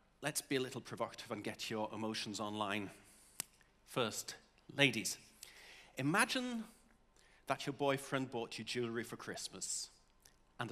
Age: 40-59